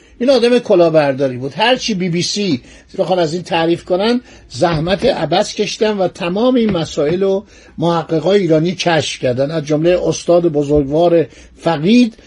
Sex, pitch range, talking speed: male, 150-195 Hz, 150 wpm